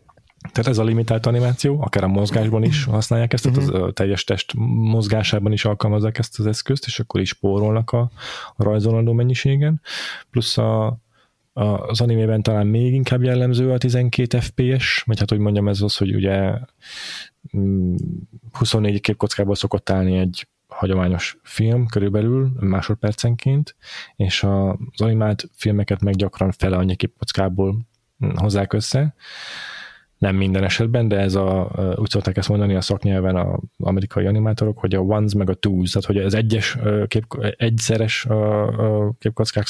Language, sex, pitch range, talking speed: Hungarian, male, 100-115 Hz, 150 wpm